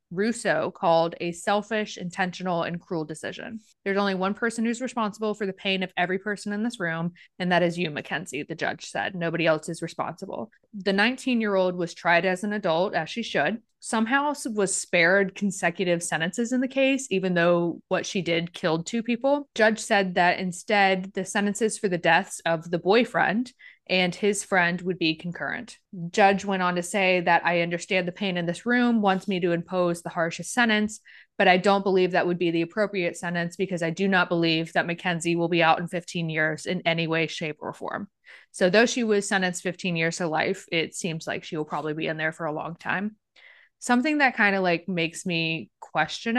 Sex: female